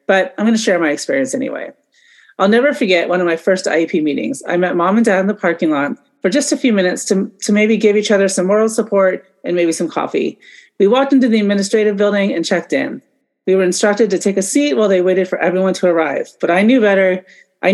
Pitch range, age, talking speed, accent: 175-225 Hz, 30-49, 240 wpm, American